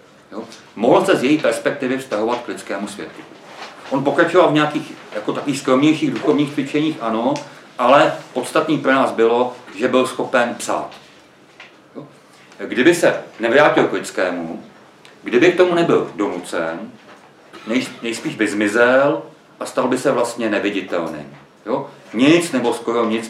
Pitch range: 120-165 Hz